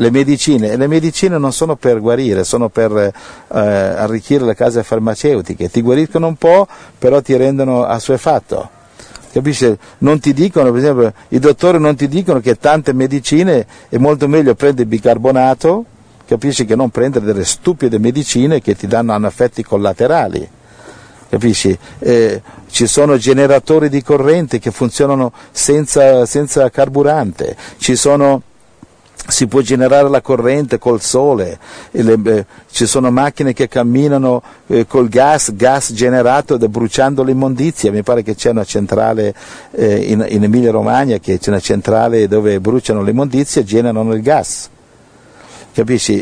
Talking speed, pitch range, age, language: 140 wpm, 115-140 Hz, 50-69, Italian